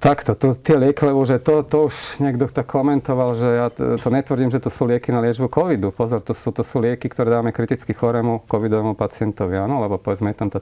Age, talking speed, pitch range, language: 40-59, 220 wpm, 100-120 Hz, Slovak